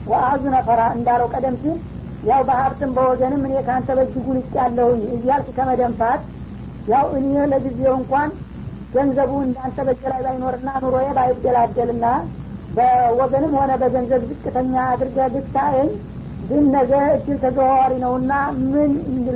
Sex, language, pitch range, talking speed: female, Amharic, 250-270 Hz, 110 wpm